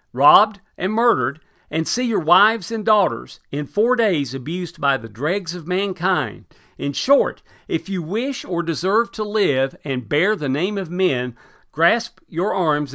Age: 50-69